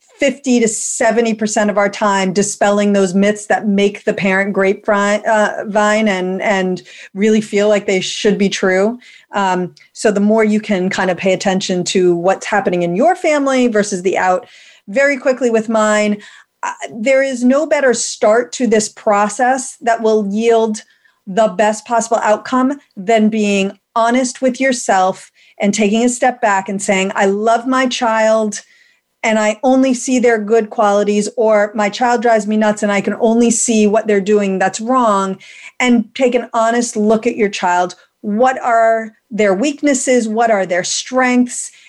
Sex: female